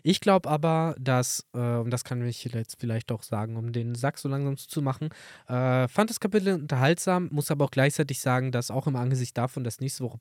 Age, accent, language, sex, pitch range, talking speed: 20-39, German, German, male, 120-150 Hz, 225 wpm